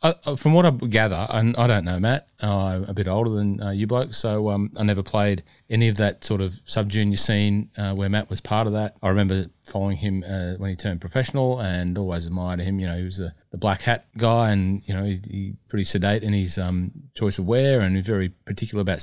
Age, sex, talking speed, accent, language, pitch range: 30-49, male, 245 wpm, Australian, English, 95-120 Hz